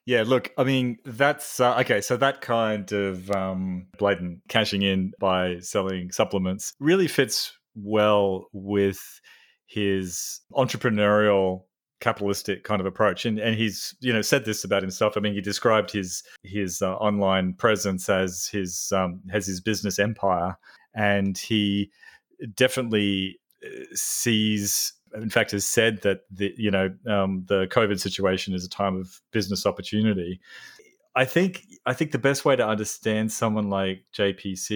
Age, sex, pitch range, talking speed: 30-49, male, 95-110 Hz, 150 wpm